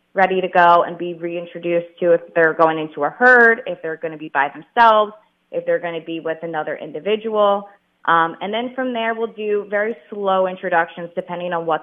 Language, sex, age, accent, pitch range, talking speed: English, female, 20-39, American, 170-205 Hz, 210 wpm